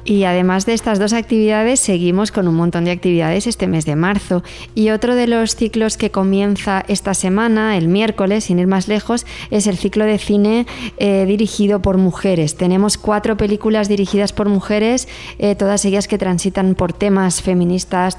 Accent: Spanish